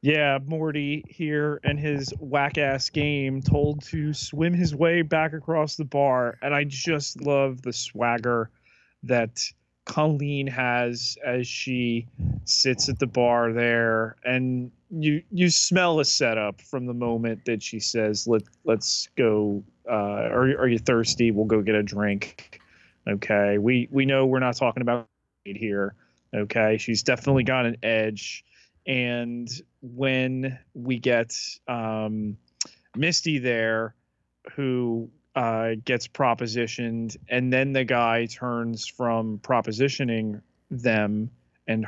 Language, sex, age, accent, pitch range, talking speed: English, male, 30-49, American, 110-135 Hz, 135 wpm